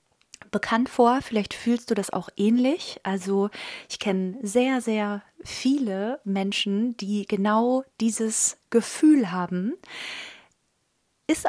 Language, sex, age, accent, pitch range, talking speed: German, female, 30-49, German, 195-245 Hz, 110 wpm